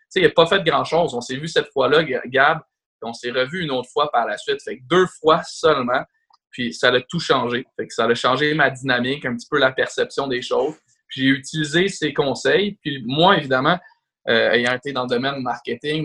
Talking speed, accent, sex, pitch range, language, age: 230 wpm, Canadian, male, 120-165 Hz, French, 20-39